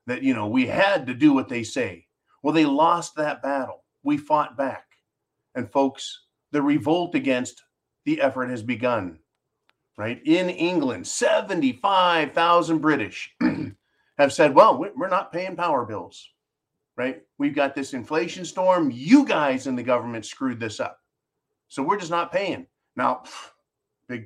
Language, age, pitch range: English, 40-59, 130-175 Hz